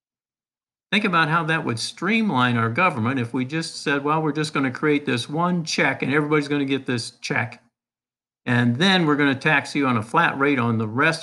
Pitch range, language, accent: 125-155 Hz, English, American